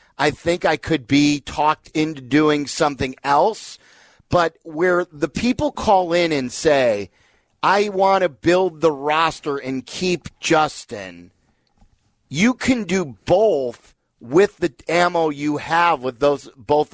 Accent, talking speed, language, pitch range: American, 140 wpm, English, 140-175 Hz